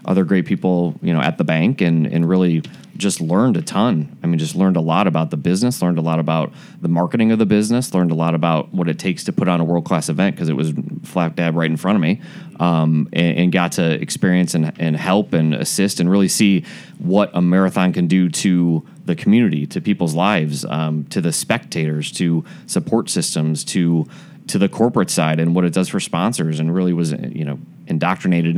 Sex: male